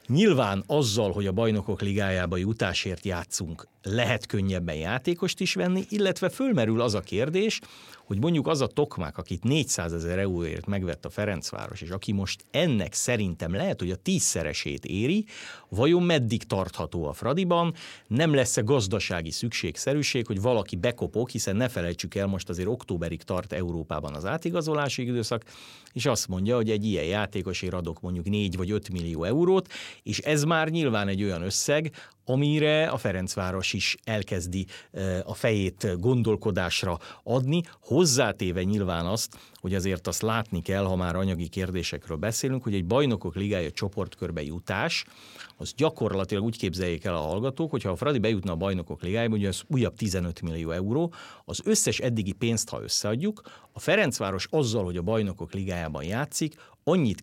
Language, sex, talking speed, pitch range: Hungarian, male, 155 wpm, 95-130 Hz